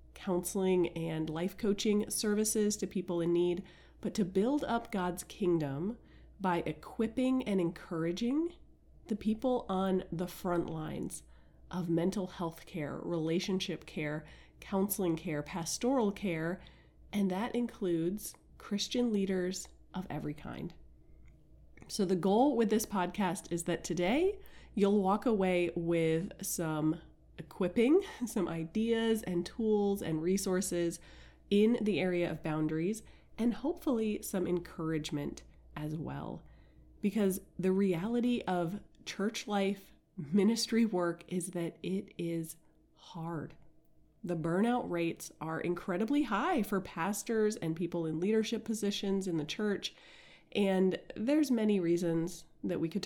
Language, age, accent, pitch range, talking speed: English, 30-49, American, 170-210 Hz, 125 wpm